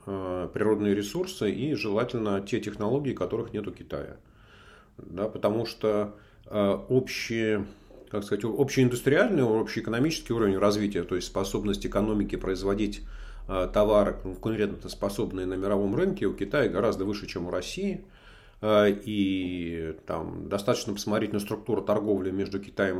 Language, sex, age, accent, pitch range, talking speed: Russian, male, 40-59, native, 95-115 Hz, 120 wpm